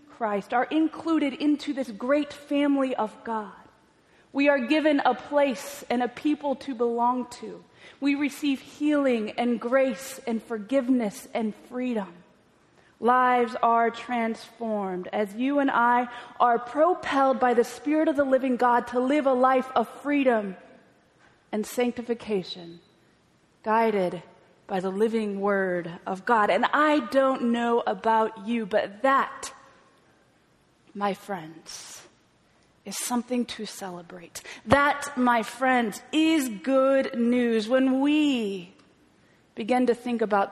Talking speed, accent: 125 wpm, American